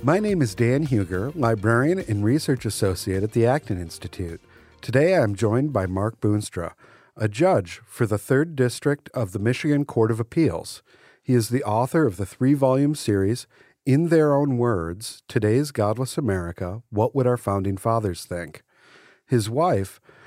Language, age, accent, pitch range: English, 50-69, American, 100-135 Hz